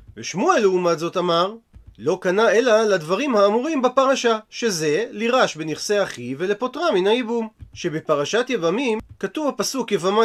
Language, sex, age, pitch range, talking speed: Hebrew, male, 30-49, 175-235 Hz, 130 wpm